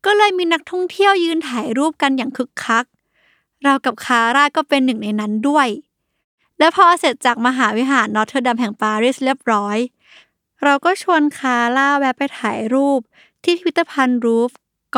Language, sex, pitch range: Thai, female, 245-320 Hz